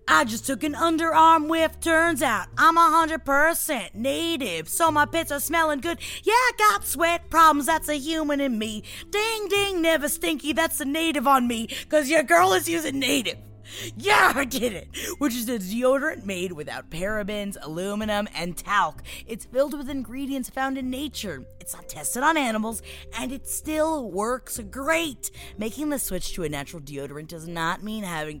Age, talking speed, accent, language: 20-39, 175 wpm, American, English